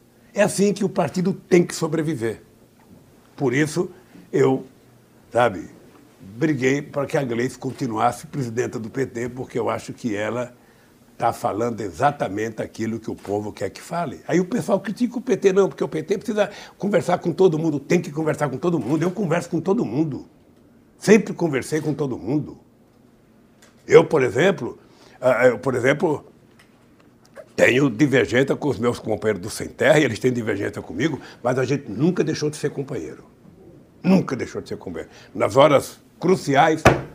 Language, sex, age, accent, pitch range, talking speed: Portuguese, male, 60-79, Brazilian, 130-175 Hz, 165 wpm